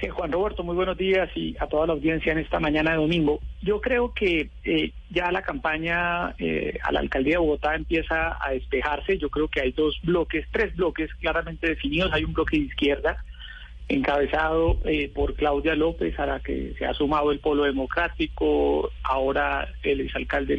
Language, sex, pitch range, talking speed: Spanish, male, 140-165 Hz, 185 wpm